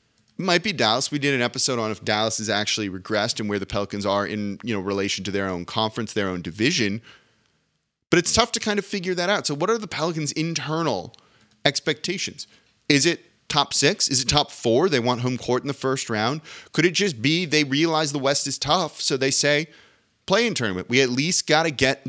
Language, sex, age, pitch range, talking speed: English, male, 30-49, 110-150 Hz, 225 wpm